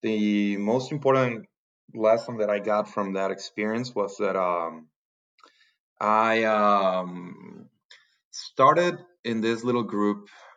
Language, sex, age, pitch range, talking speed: English, male, 30-49, 100-125 Hz, 115 wpm